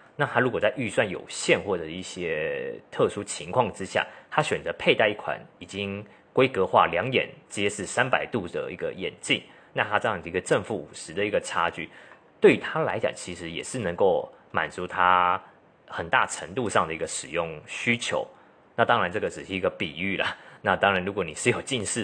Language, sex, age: Chinese, male, 30-49